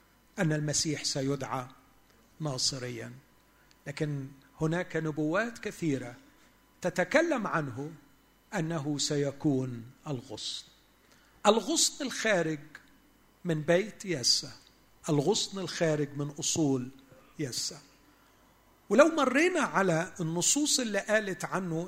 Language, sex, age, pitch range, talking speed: Arabic, male, 50-69, 145-190 Hz, 80 wpm